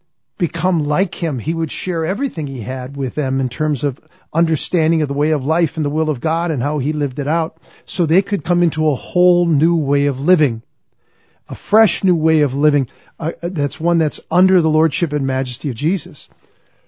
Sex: male